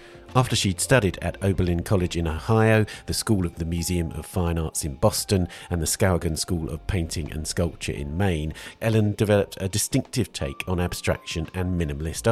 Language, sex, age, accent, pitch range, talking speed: English, male, 50-69, British, 85-105 Hz, 180 wpm